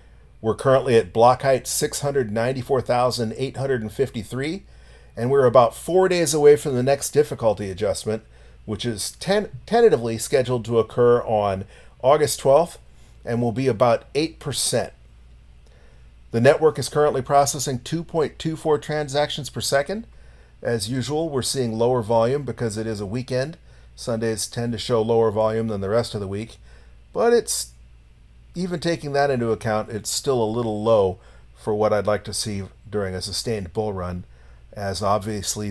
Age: 40-59